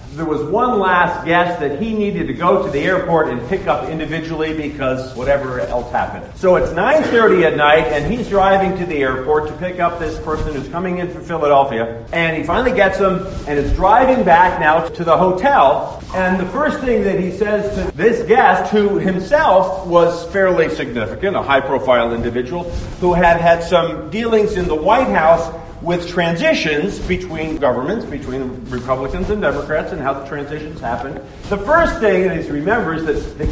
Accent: American